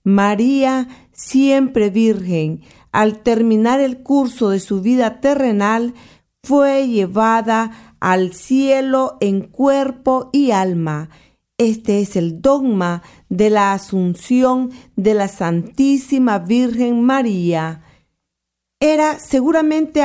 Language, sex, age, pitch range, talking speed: Spanish, female, 40-59, 200-255 Hz, 100 wpm